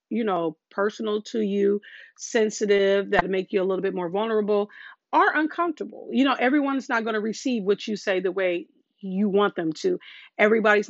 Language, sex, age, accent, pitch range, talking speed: English, female, 40-59, American, 195-245 Hz, 180 wpm